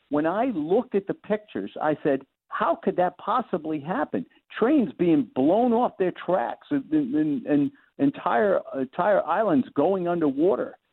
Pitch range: 145-220 Hz